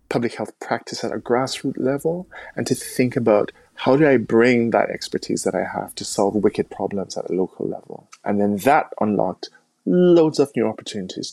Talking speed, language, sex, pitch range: 190 wpm, English, male, 105-130 Hz